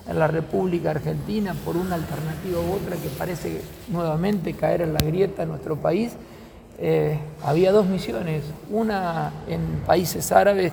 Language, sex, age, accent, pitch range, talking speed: Spanish, male, 40-59, Argentinian, 155-190 Hz, 150 wpm